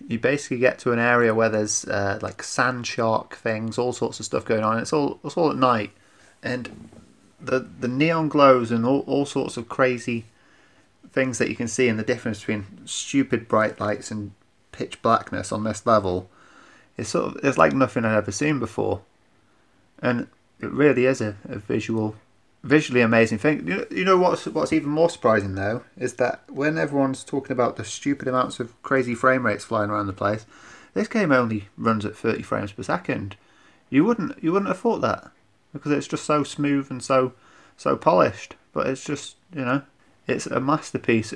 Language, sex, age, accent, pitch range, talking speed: English, male, 30-49, British, 110-135 Hz, 195 wpm